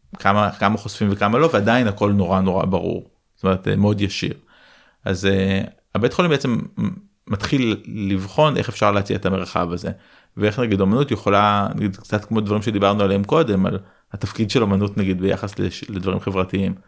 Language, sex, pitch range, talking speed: Hebrew, male, 95-110 Hz, 160 wpm